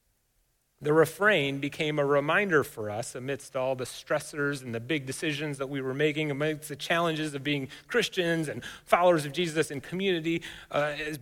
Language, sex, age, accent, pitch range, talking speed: English, male, 30-49, American, 135-175 Hz, 175 wpm